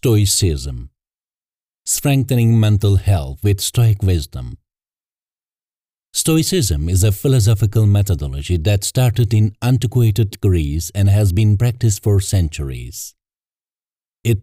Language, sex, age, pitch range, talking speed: English, male, 50-69, 95-115 Hz, 100 wpm